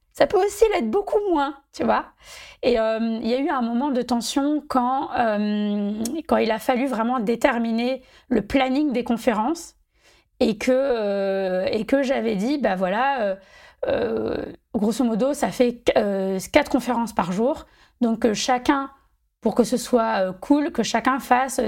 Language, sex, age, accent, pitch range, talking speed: French, female, 20-39, French, 220-275 Hz, 165 wpm